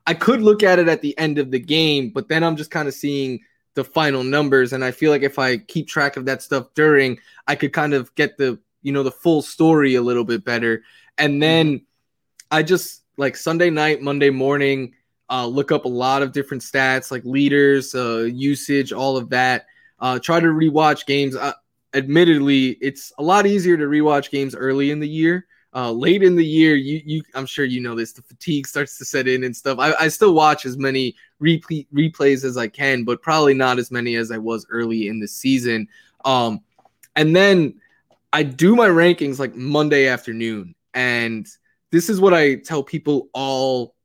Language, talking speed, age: English, 205 wpm, 20-39